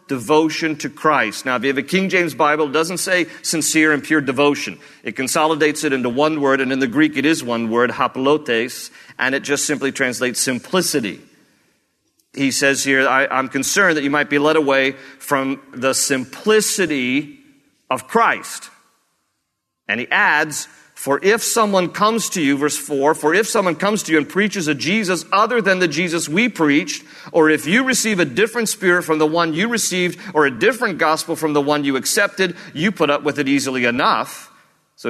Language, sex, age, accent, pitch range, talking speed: English, male, 50-69, American, 135-205 Hz, 185 wpm